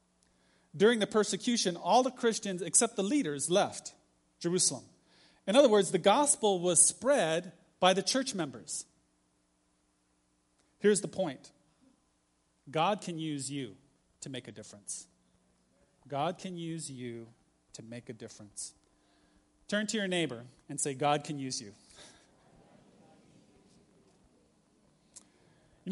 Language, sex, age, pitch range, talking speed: English, male, 30-49, 135-190 Hz, 120 wpm